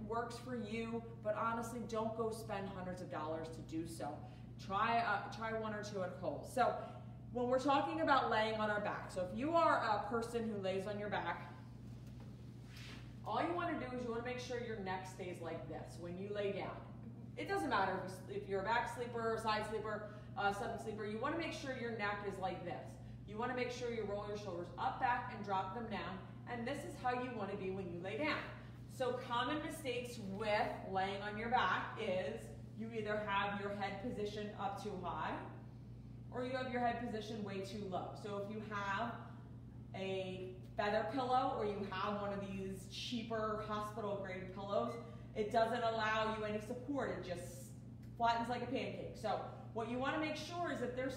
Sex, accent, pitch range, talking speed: female, American, 175-235 Hz, 210 wpm